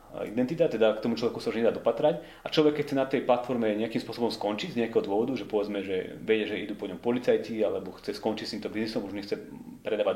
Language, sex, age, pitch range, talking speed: Slovak, male, 30-49, 110-145 Hz, 235 wpm